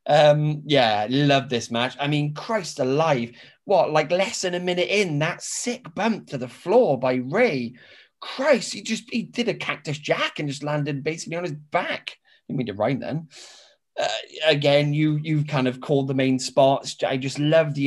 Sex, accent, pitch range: male, British, 115-155 Hz